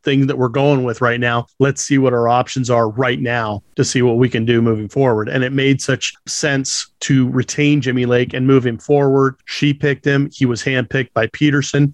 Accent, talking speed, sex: American, 220 wpm, male